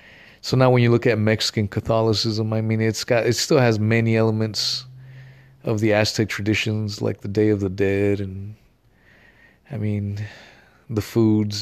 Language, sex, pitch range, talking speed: English, male, 100-115 Hz, 165 wpm